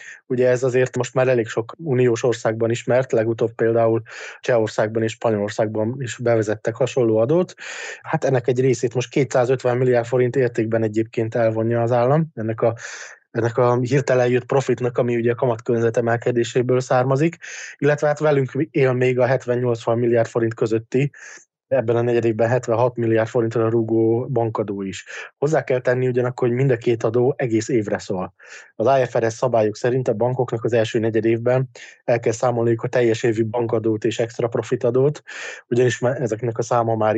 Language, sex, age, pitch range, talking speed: Hungarian, male, 20-39, 115-130 Hz, 165 wpm